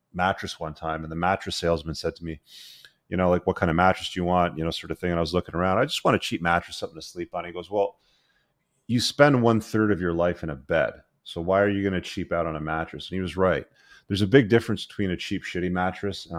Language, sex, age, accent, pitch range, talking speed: English, male, 30-49, American, 80-100 Hz, 285 wpm